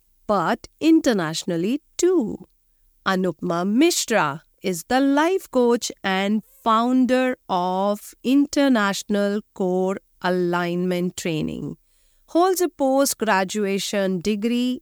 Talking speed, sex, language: 85 wpm, female, Hindi